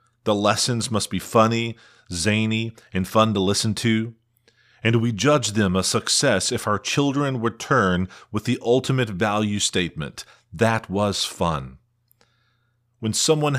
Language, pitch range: English, 105-125 Hz